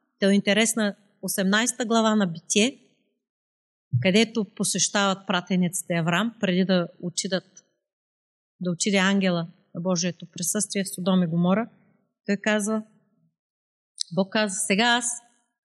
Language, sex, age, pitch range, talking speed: Bulgarian, female, 30-49, 180-230 Hz, 110 wpm